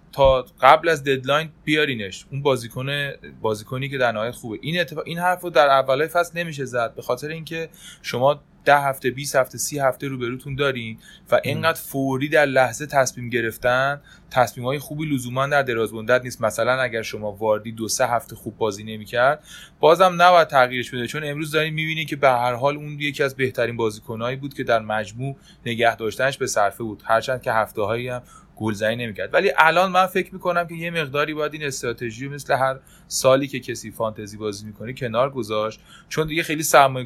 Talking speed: 185 wpm